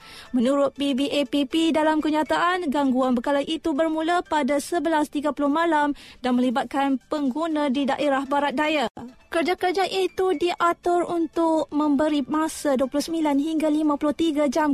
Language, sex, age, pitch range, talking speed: Malay, female, 20-39, 280-320 Hz, 115 wpm